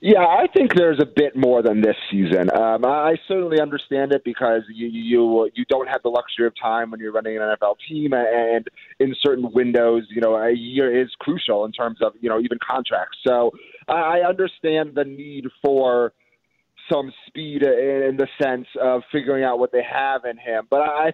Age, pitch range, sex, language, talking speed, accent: 30-49, 120-145 Hz, male, English, 195 wpm, American